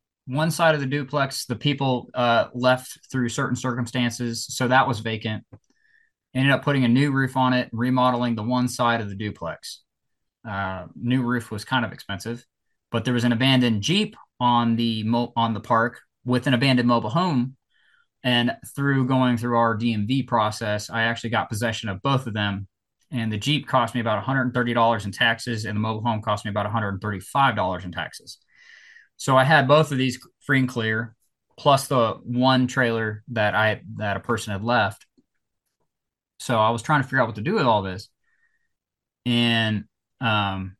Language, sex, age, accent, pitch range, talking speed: English, male, 20-39, American, 110-135 Hz, 180 wpm